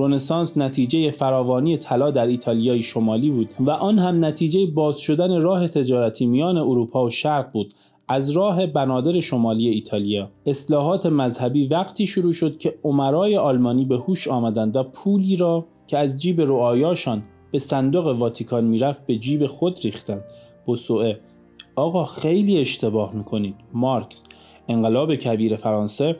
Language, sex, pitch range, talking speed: Persian, male, 115-165 Hz, 135 wpm